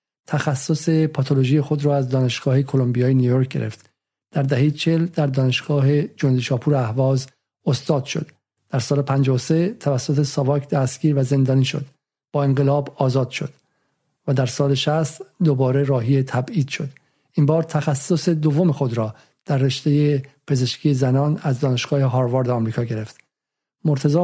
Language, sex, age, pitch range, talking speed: Persian, male, 50-69, 135-155 Hz, 140 wpm